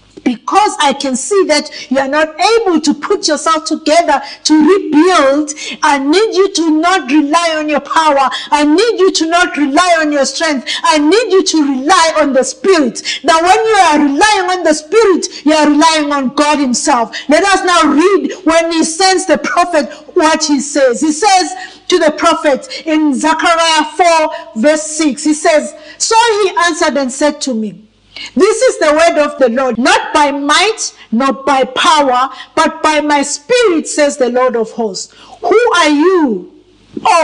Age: 50-69